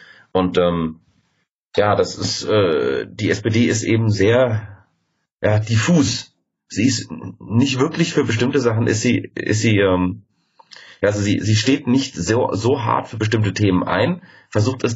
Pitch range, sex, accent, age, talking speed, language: 95-120 Hz, male, German, 30-49, 160 wpm, German